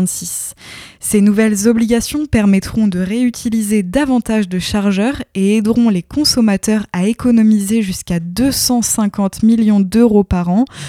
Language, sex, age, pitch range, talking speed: French, female, 20-39, 190-230 Hz, 115 wpm